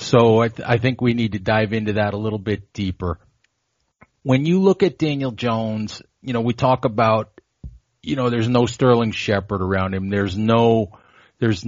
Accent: American